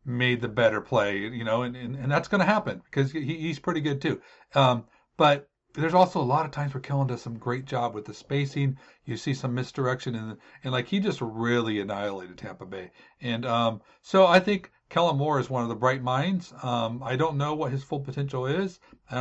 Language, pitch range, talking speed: English, 120-160 Hz, 230 wpm